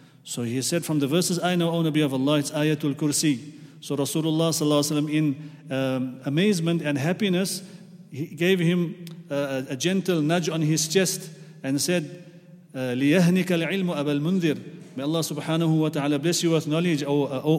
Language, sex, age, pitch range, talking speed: English, male, 40-59, 145-170 Hz, 155 wpm